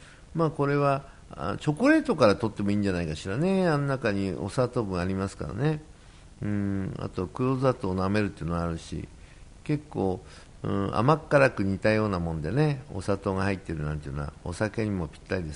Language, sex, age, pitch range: Japanese, male, 50-69, 95-145 Hz